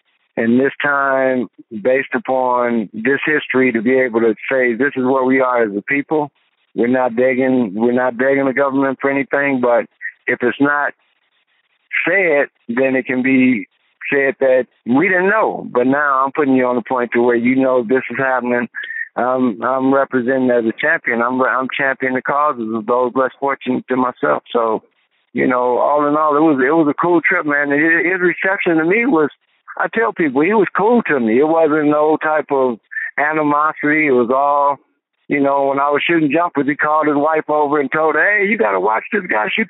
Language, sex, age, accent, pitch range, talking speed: English, male, 60-79, American, 130-155 Hz, 210 wpm